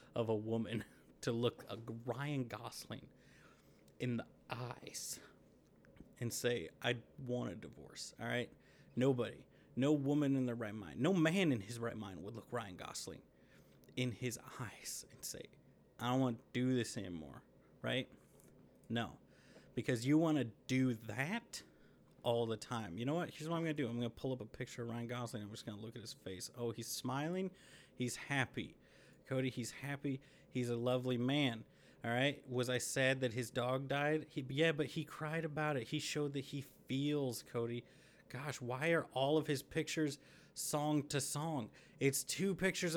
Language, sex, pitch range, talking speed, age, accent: English, male, 120-145 Hz, 180 wpm, 30-49, American